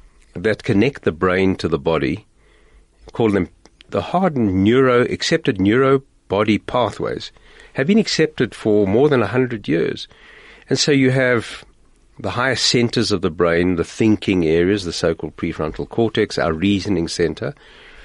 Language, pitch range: English, 90-130 Hz